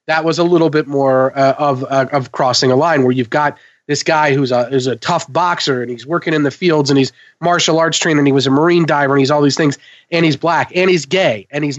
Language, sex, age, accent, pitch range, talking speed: English, male, 30-49, American, 140-170 Hz, 275 wpm